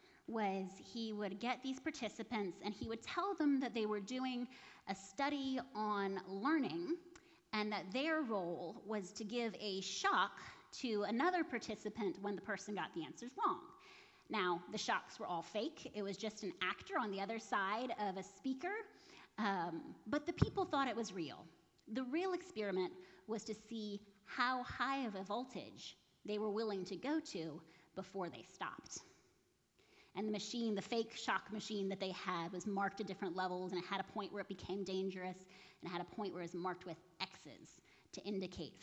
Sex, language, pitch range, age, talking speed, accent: female, English, 190-245 Hz, 30-49, 185 wpm, American